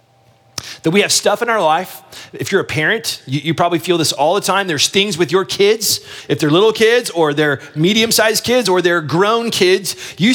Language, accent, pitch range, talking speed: English, American, 125-195 Hz, 215 wpm